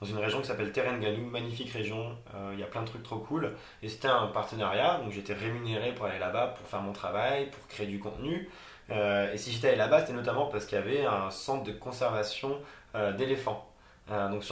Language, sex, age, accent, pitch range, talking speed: French, male, 20-39, French, 105-125 Hz, 230 wpm